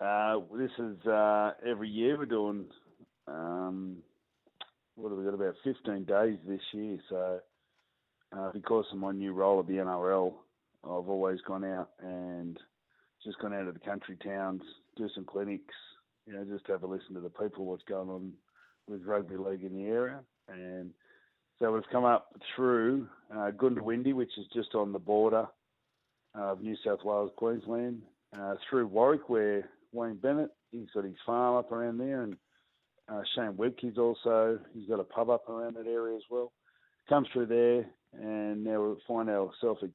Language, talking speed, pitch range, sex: English, 175 wpm, 95-115 Hz, male